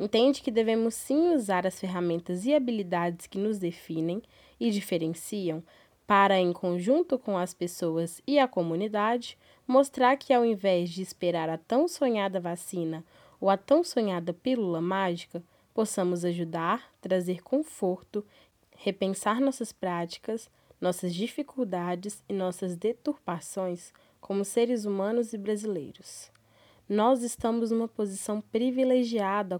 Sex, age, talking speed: female, 10-29, 125 wpm